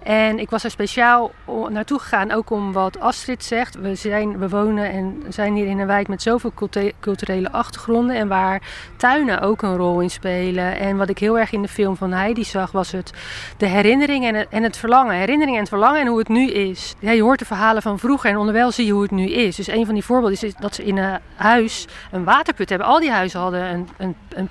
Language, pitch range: Dutch, 190-230 Hz